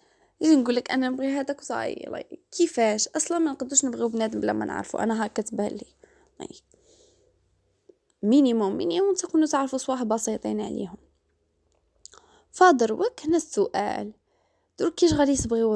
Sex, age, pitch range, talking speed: female, 10-29, 205-300 Hz, 135 wpm